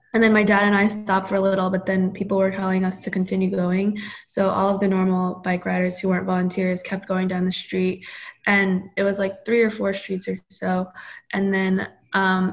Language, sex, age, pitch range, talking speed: English, female, 20-39, 185-200 Hz, 225 wpm